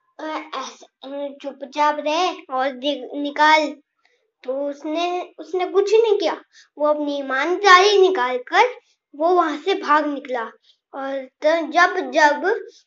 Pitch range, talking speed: 295-375 Hz, 90 wpm